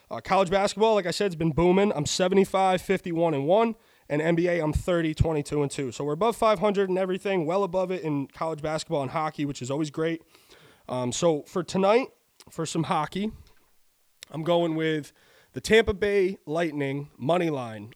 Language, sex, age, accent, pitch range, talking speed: English, male, 20-39, American, 135-180 Hz, 165 wpm